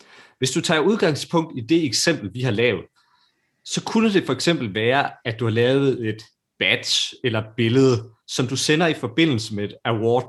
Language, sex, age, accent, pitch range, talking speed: Danish, male, 30-49, native, 110-150 Hz, 190 wpm